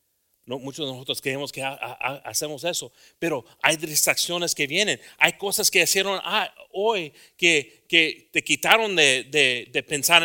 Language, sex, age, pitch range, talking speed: English, male, 40-59, 115-155 Hz, 175 wpm